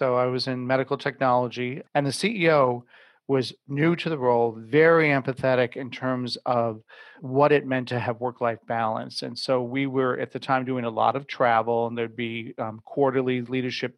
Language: English